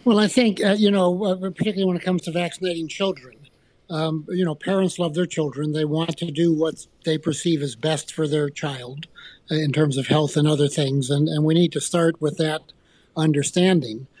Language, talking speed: English, 210 wpm